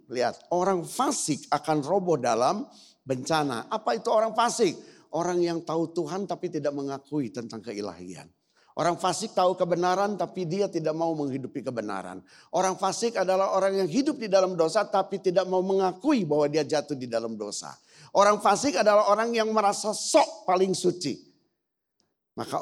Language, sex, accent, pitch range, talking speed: Indonesian, male, native, 140-190 Hz, 155 wpm